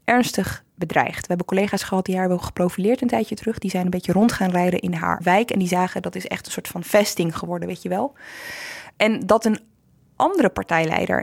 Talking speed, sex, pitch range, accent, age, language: 225 wpm, female, 185-235 Hz, Dutch, 20-39, Dutch